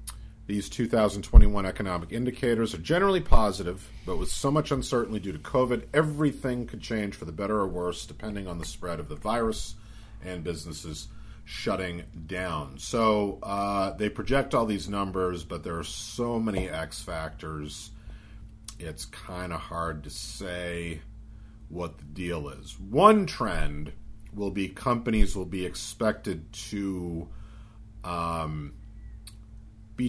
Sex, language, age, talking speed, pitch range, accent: male, English, 40-59, 140 wpm, 85-110 Hz, American